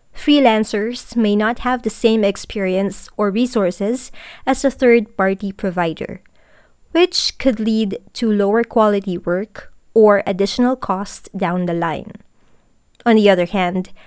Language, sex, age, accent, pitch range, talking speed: English, female, 20-39, Filipino, 195-245 Hz, 130 wpm